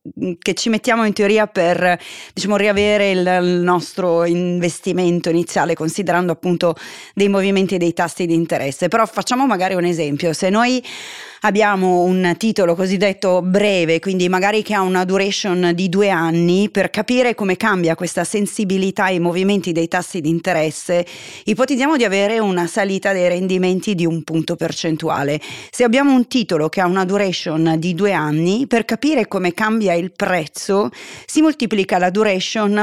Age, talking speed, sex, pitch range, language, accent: 30-49, 155 wpm, female, 170-210 Hz, Italian, native